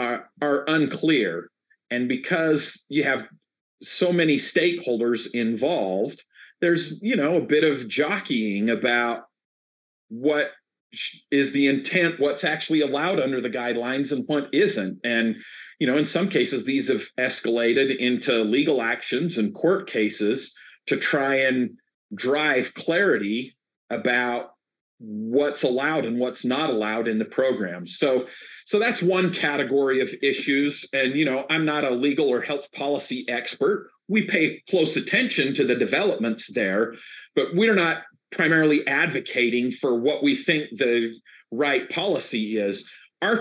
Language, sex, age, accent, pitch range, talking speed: English, male, 40-59, American, 120-160 Hz, 140 wpm